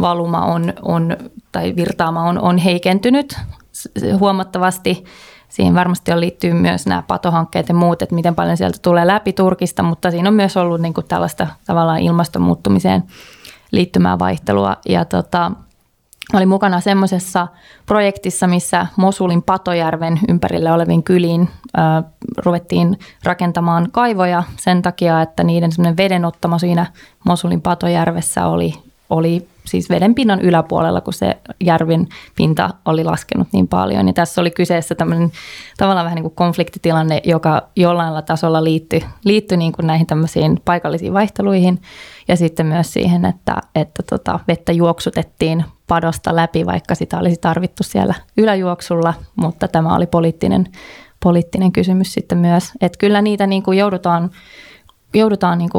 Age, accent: 20-39, native